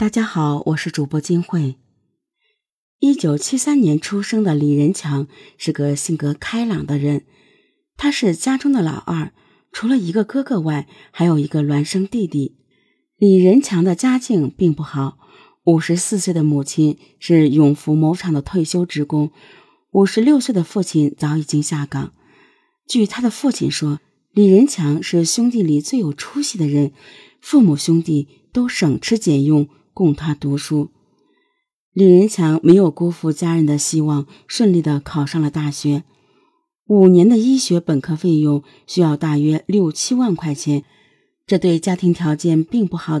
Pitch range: 150-205 Hz